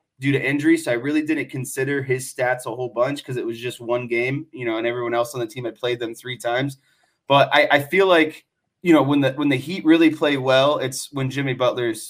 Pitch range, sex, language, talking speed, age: 130-150 Hz, male, English, 255 wpm, 20-39